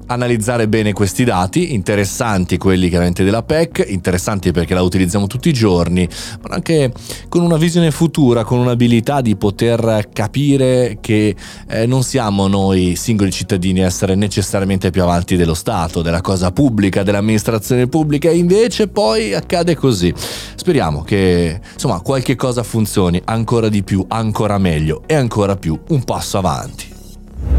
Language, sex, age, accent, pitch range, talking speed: Italian, male, 30-49, native, 95-135 Hz, 150 wpm